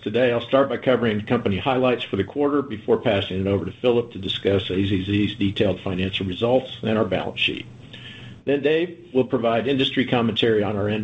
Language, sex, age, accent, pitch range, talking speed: English, male, 50-69, American, 100-125 Hz, 190 wpm